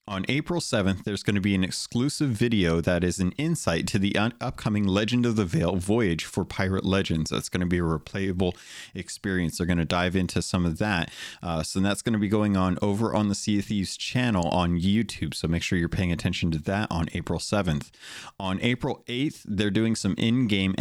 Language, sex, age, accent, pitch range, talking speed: English, male, 30-49, American, 90-110 Hz, 205 wpm